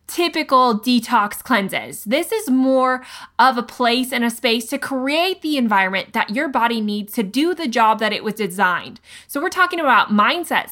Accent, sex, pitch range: American, female, 210-305 Hz